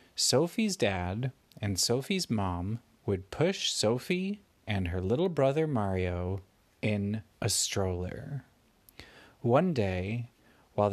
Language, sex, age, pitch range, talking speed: English, male, 30-49, 100-135 Hz, 105 wpm